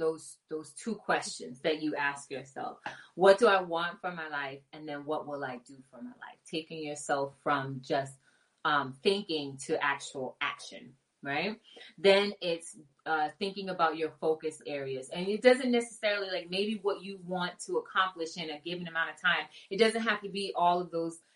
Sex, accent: female, American